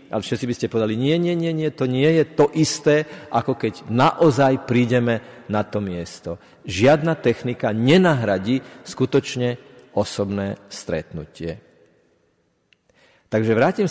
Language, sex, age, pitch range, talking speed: Slovak, male, 50-69, 115-155 Hz, 120 wpm